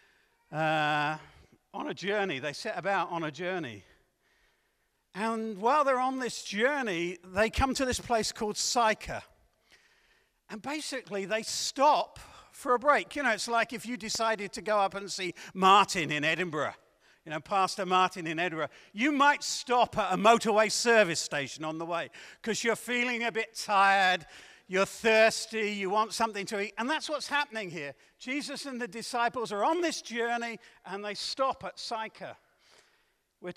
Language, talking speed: English, 170 wpm